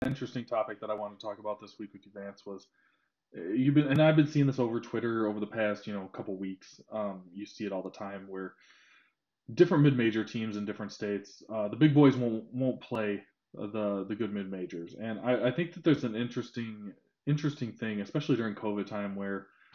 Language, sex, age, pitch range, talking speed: English, male, 20-39, 100-130 Hz, 220 wpm